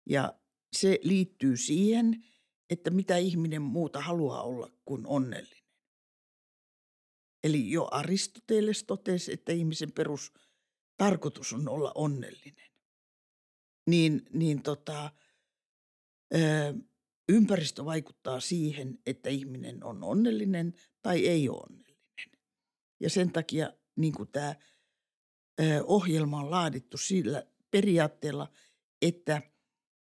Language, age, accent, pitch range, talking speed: Finnish, 60-79, native, 145-190 Hz, 95 wpm